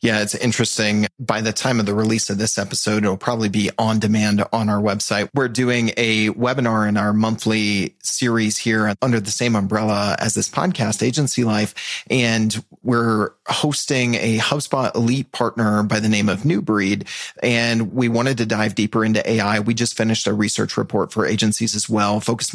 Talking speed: 185 wpm